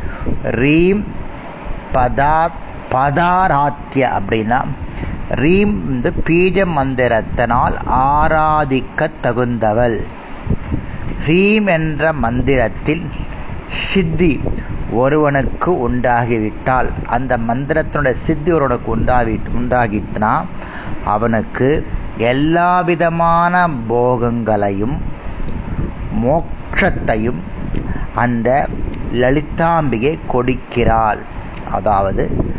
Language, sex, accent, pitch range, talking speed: Tamil, male, native, 120-160 Hz, 45 wpm